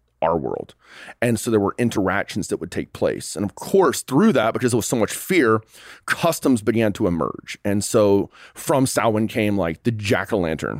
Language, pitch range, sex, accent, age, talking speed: English, 100-125 Hz, male, American, 30-49, 190 wpm